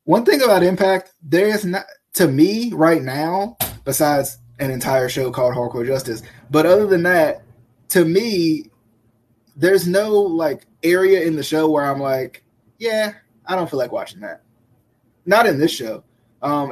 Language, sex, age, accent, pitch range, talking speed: English, male, 20-39, American, 120-160 Hz, 160 wpm